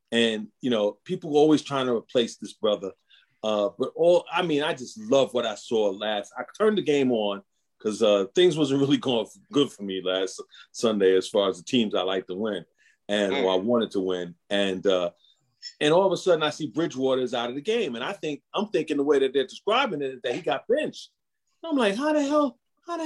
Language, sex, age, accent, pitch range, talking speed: English, male, 40-59, American, 135-210 Hz, 240 wpm